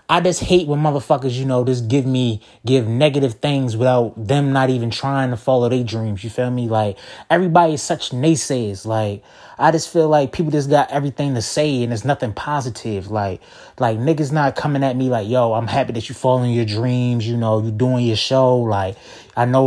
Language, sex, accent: English, male, American